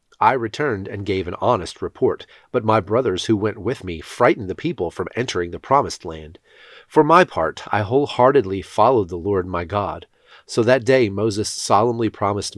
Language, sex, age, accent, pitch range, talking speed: English, male, 40-59, American, 90-115 Hz, 180 wpm